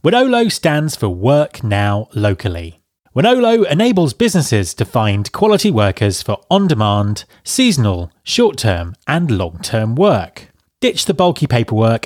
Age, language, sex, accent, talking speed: 30-49, English, male, British, 120 wpm